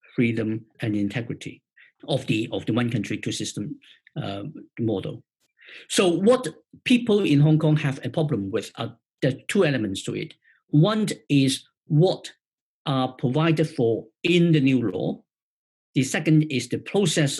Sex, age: male, 50-69